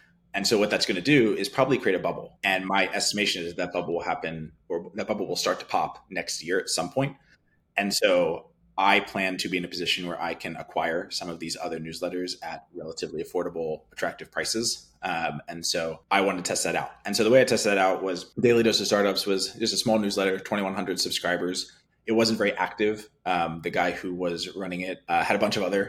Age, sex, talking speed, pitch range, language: 20-39, male, 230 wpm, 90-115 Hz, English